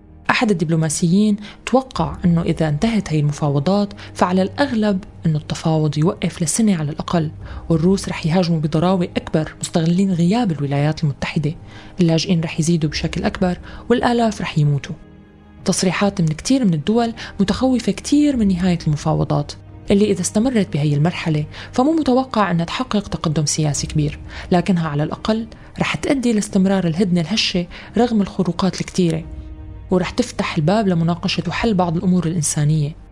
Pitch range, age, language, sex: 160-200 Hz, 20-39, Arabic, female